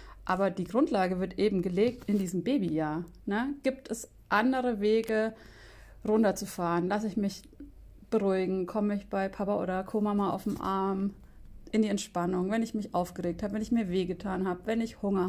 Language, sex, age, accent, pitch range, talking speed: German, female, 30-49, German, 185-225 Hz, 175 wpm